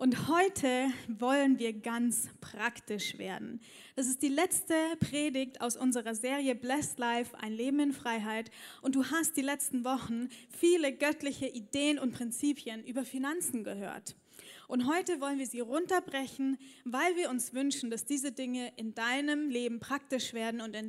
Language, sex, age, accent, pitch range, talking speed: German, female, 10-29, German, 240-285 Hz, 160 wpm